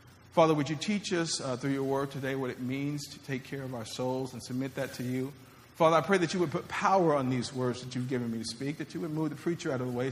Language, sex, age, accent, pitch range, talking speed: English, male, 40-59, American, 125-170 Hz, 300 wpm